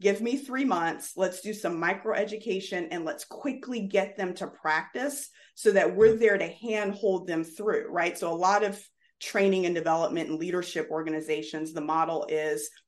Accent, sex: American, female